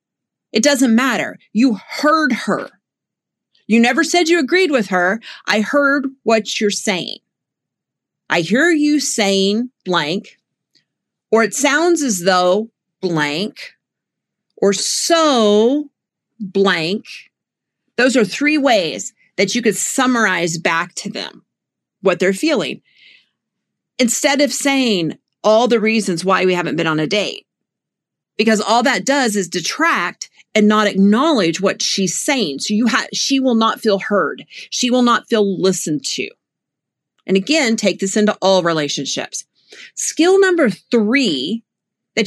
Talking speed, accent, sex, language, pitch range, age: 135 wpm, American, female, English, 190-260 Hz, 40-59